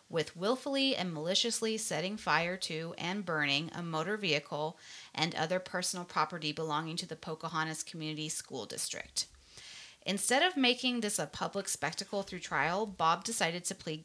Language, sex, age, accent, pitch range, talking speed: English, female, 30-49, American, 155-200 Hz, 155 wpm